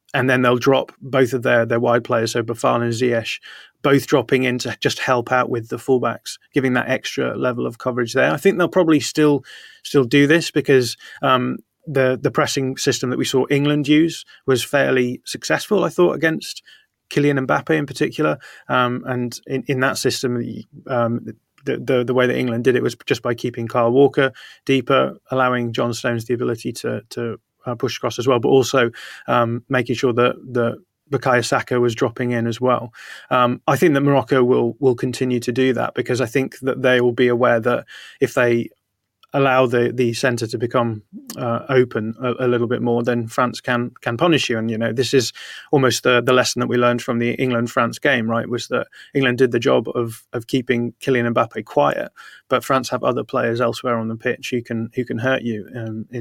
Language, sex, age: English, male, 30-49